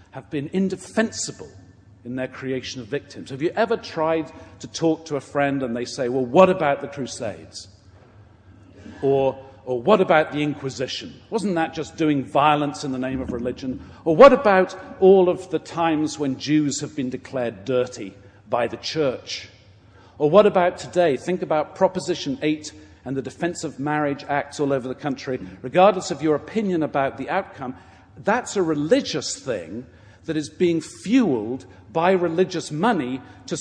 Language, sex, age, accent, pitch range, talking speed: English, male, 50-69, British, 110-180 Hz, 170 wpm